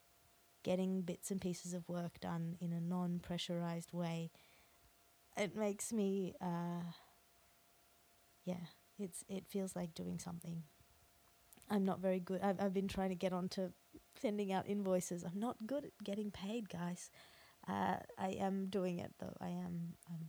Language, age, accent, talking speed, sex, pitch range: English, 20-39, Australian, 155 wpm, female, 175-190 Hz